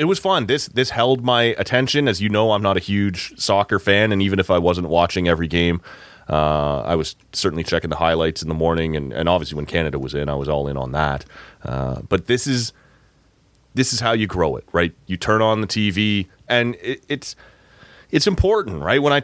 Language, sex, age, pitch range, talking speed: English, male, 30-49, 85-110 Hz, 225 wpm